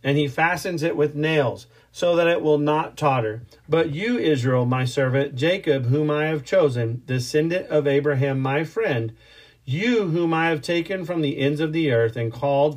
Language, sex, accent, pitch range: English, male, American, 120-155 Hz